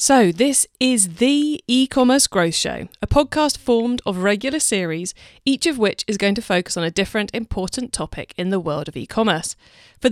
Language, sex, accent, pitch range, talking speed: English, female, British, 185-260 Hz, 185 wpm